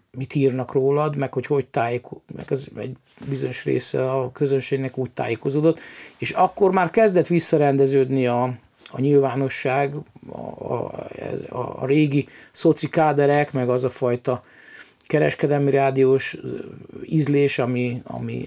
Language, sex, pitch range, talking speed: Hungarian, male, 130-160 Hz, 125 wpm